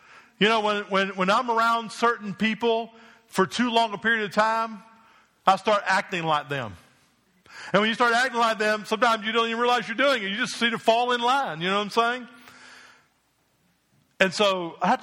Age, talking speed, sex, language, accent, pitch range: 50-69, 210 wpm, male, English, American, 170-215 Hz